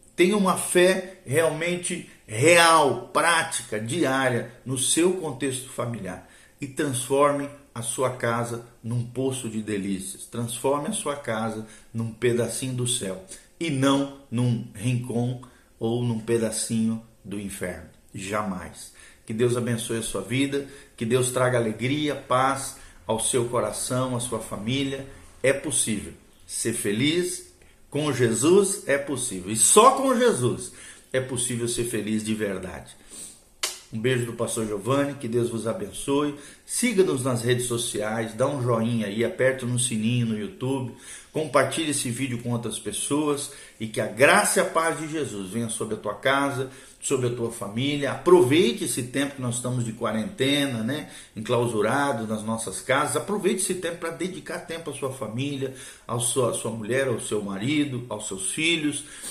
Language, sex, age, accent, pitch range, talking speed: Portuguese, male, 50-69, Brazilian, 115-140 Hz, 155 wpm